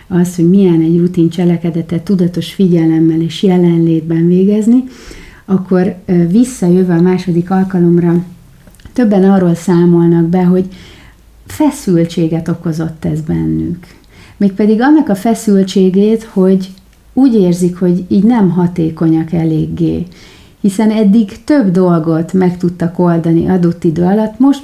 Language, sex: Hungarian, female